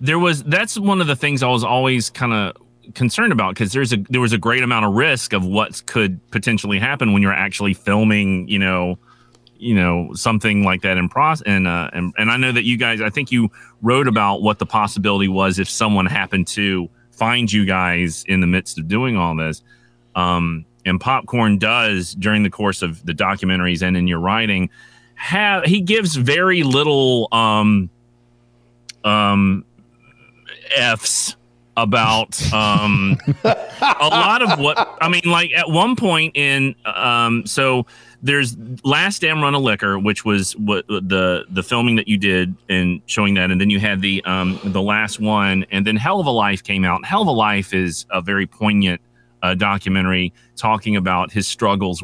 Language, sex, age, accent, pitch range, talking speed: English, male, 30-49, American, 95-120 Hz, 185 wpm